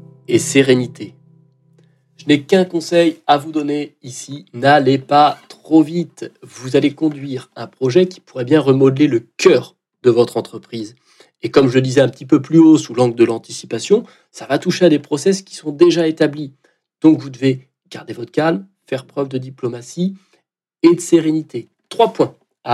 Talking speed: 180 wpm